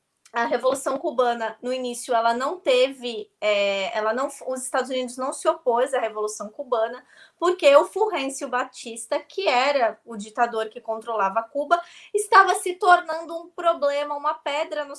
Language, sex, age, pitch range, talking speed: Portuguese, female, 20-39, 240-330 Hz, 145 wpm